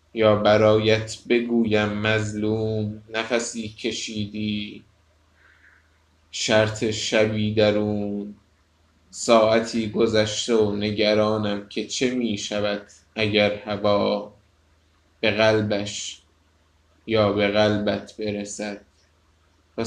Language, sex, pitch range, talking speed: Persian, male, 100-115 Hz, 80 wpm